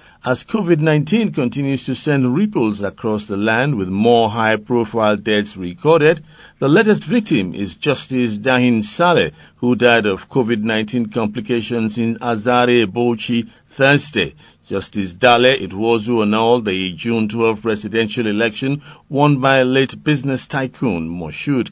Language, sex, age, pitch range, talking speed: English, male, 50-69, 105-135 Hz, 130 wpm